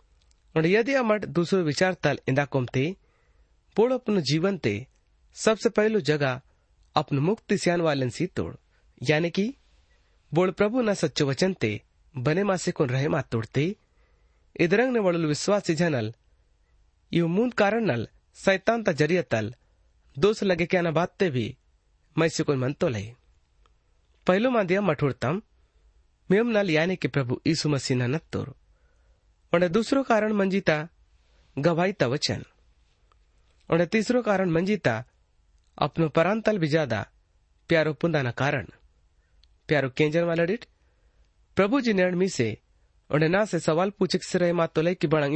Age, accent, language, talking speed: 30-49, native, Hindi, 115 wpm